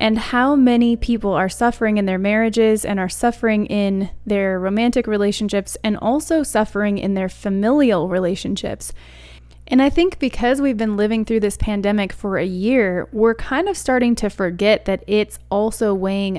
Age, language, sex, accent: 20-39, English, female, American